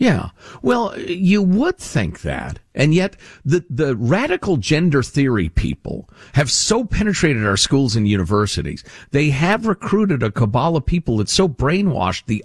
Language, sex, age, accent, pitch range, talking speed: English, male, 50-69, American, 105-165 Hz, 150 wpm